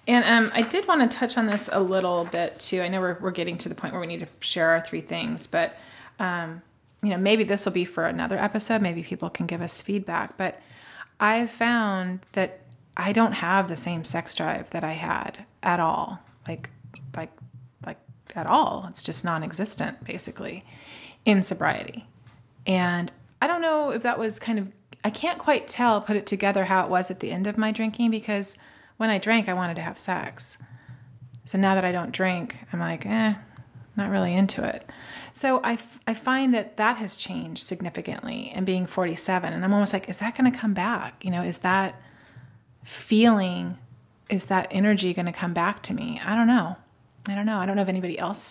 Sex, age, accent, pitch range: female, 30-49, American, 175-220 Hz